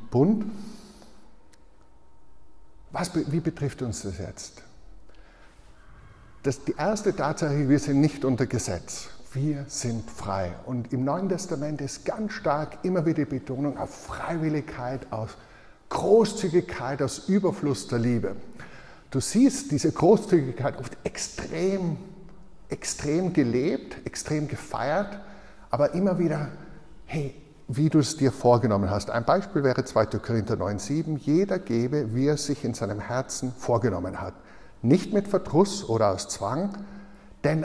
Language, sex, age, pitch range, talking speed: German, male, 60-79, 120-165 Hz, 130 wpm